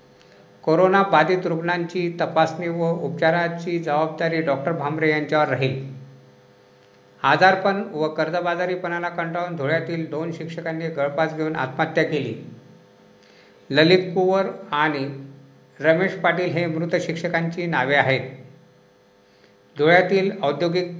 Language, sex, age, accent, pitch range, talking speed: Marathi, male, 50-69, native, 145-170 Hz, 105 wpm